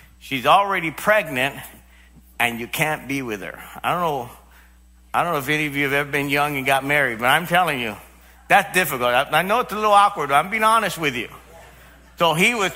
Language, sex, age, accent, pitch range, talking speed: English, male, 50-69, American, 140-205 Hz, 225 wpm